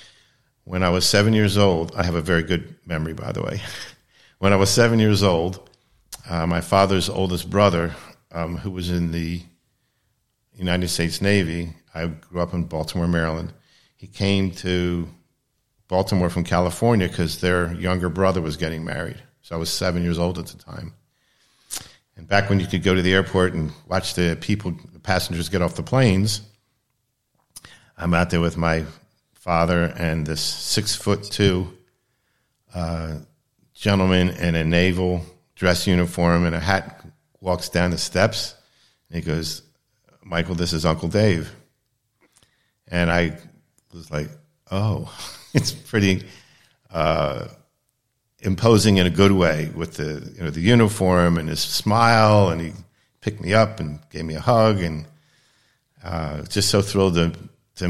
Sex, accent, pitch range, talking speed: male, American, 85-105 Hz, 160 wpm